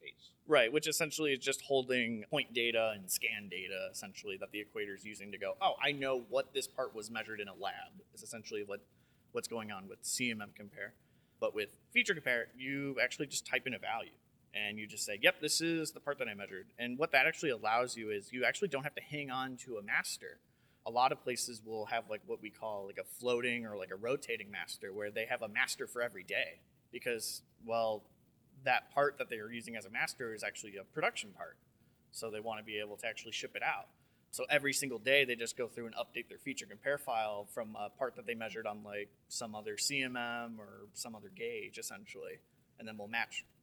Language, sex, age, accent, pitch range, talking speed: English, male, 30-49, American, 110-140 Hz, 230 wpm